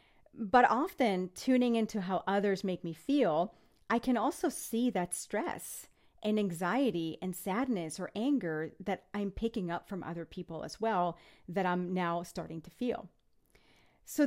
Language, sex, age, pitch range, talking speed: English, female, 40-59, 175-225 Hz, 155 wpm